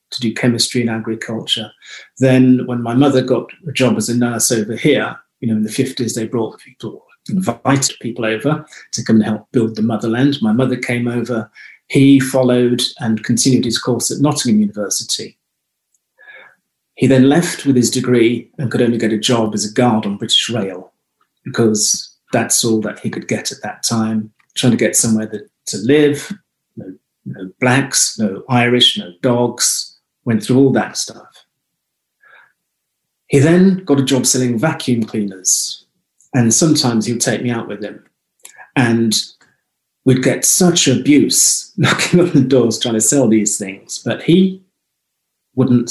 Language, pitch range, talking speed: English, 115-140 Hz, 165 wpm